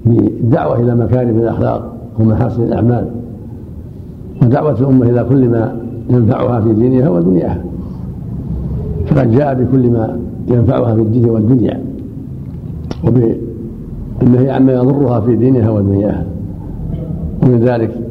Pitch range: 105-120 Hz